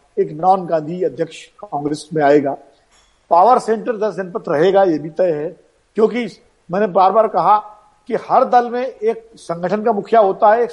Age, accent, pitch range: 50-69, native, 175-230 Hz